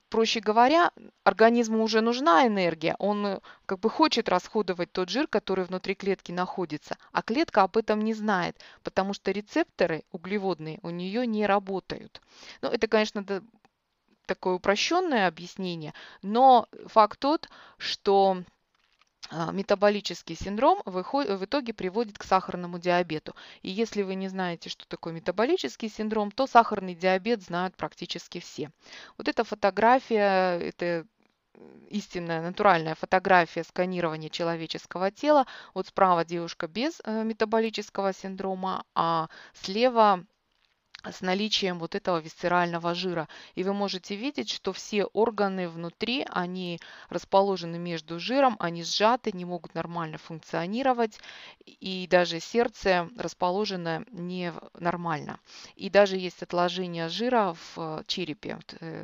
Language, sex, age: Russian, female, 20-39